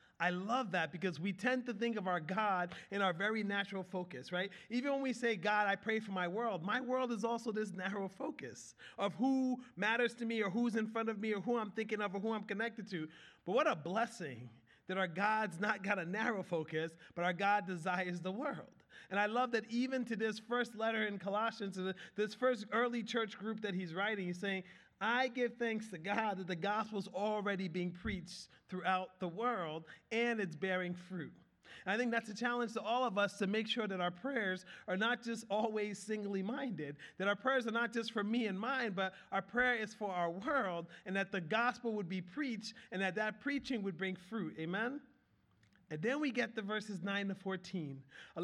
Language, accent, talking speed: English, American, 220 wpm